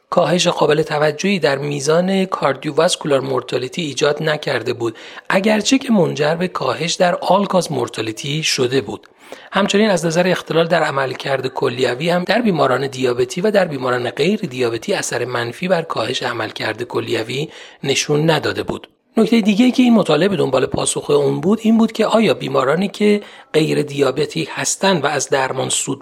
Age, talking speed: 40-59, 160 wpm